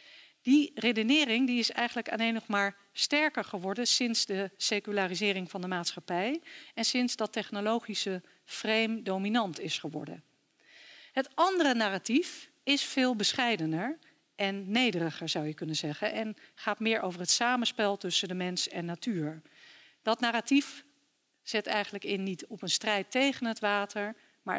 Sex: female